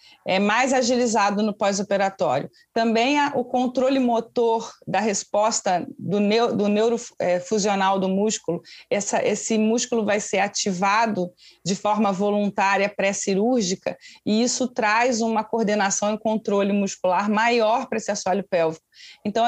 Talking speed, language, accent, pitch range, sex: 130 wpm, Portuguese, Brazilian, 200-240 Hz, female